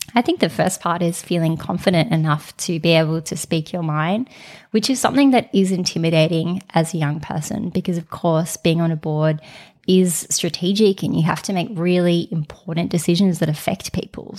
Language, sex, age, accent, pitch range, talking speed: English, female, 20-39, Australian, 160-190 Hz, 190 wpm